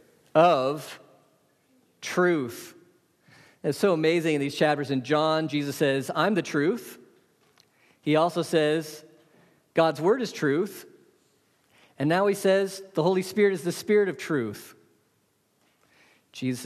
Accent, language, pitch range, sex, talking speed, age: American, English, 140-205 Hz, male, 125 wpm, 40-59